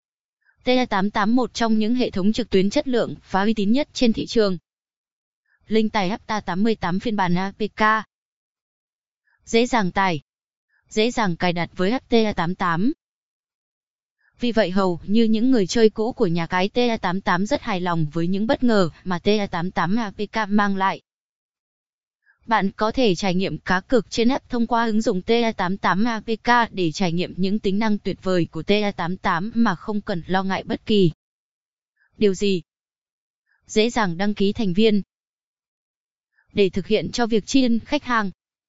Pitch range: 185-225 Hz